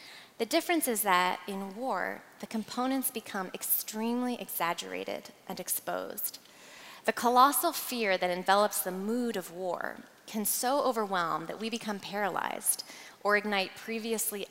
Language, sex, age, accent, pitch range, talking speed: English, female, 20-39, American, 175-210 Hz, 130 wpm